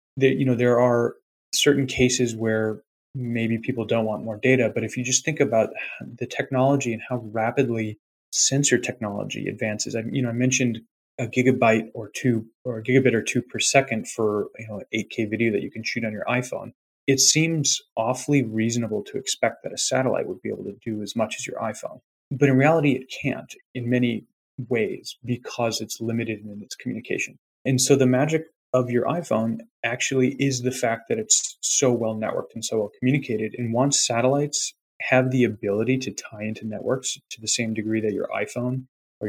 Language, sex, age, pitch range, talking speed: English, male, 30-49, 110-130 Hz, 195 wpm